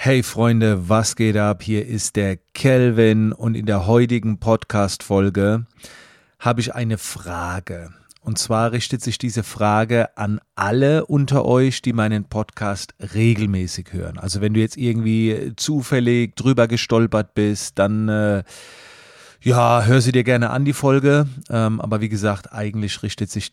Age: 30-49